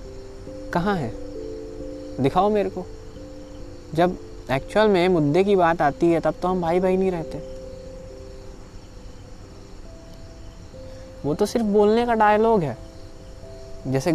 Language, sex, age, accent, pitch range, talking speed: Hindi, male, 20-39, native, 110-170 Hz, 120 wpm